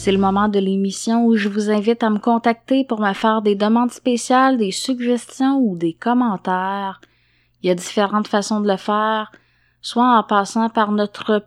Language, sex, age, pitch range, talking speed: French, female, 20-39, 190-235 Hz, 190 wpm